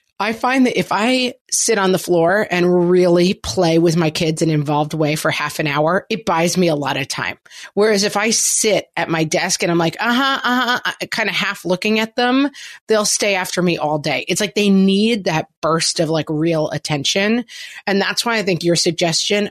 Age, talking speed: 30-49, 220 wpm